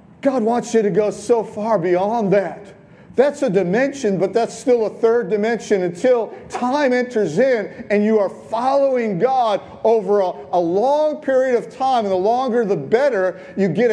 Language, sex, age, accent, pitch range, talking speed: English, male, 50-69, American, 210-265 Hz, 175 wpm